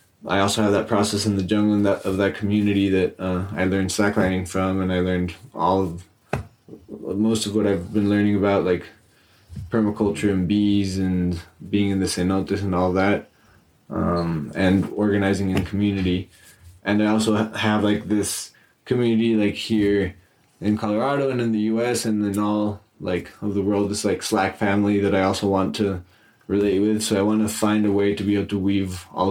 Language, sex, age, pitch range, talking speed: English, male, 20-39, 95-105 Hz, 190 wpm